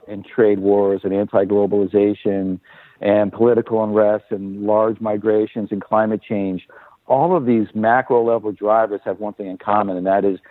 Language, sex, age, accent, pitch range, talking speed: English, male, 50-69, American, 100-115 Hz, 160 wpm